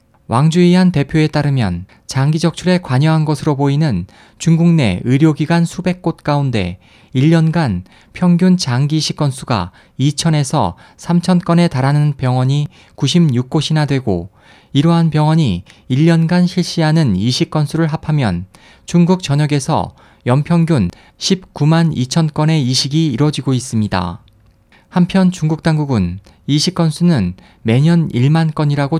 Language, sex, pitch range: Korean, male, 125-165 Hz